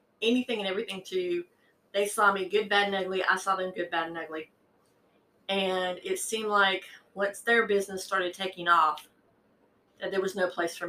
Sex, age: female, 30-49